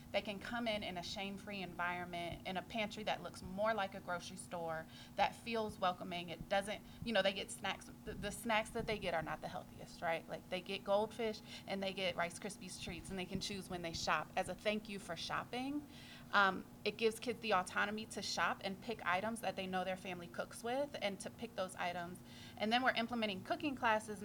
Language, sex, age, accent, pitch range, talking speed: English, female, 30-49, American, 185-220 Hz, 225 wpm